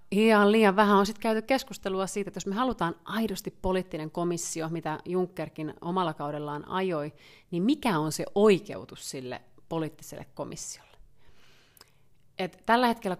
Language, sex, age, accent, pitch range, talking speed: Finnish, female, 30-49, native, 150-190 Hz, 135 wpm